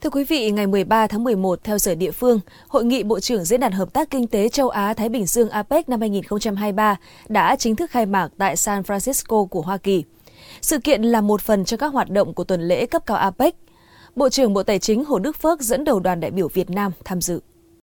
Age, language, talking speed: 20-39, Vietnamese, 240 wpm